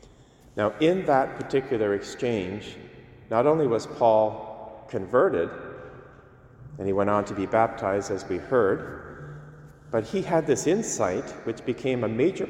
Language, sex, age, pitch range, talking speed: English, male, 40-59, 110-140 Hz, 140 wpm